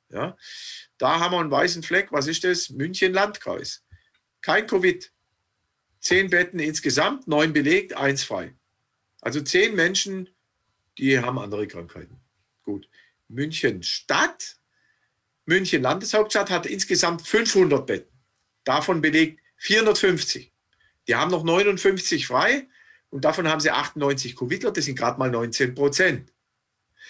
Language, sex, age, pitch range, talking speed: German, male, 50-69, 110-175 Hz, 125 wpm